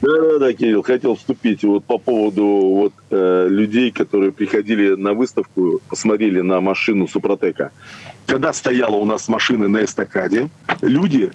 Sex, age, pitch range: male, 40-59, 100-170 Hz